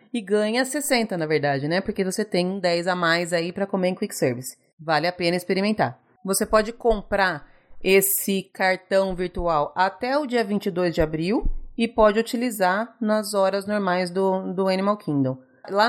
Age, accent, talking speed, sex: 30-49, Brazilian, 170 wpm, female